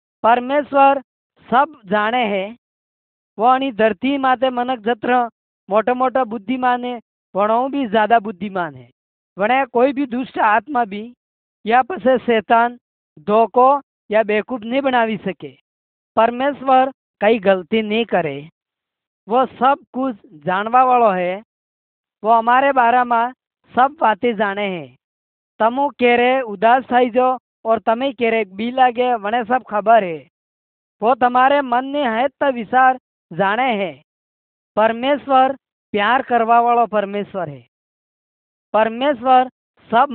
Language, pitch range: Hindi, 210-255 Hz